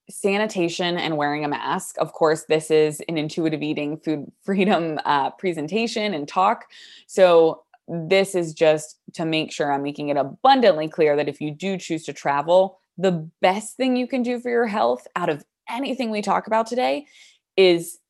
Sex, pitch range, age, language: female, 150-195 Hz, 20-39, English